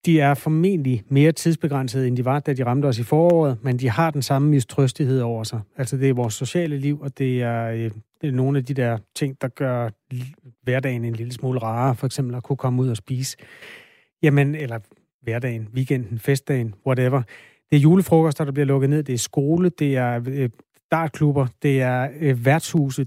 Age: 30-49